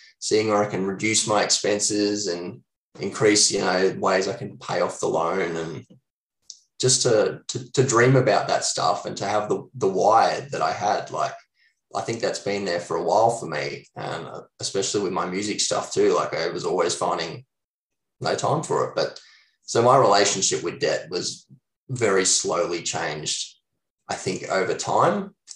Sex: male